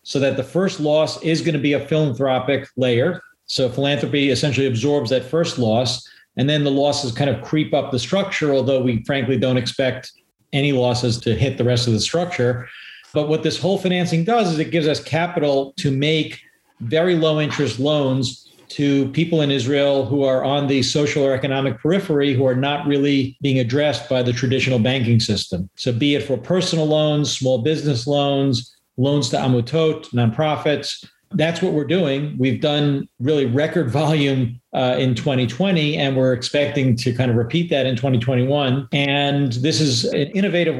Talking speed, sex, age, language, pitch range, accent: 180 wpm, male, 40-59, English, 130-150 Hz, American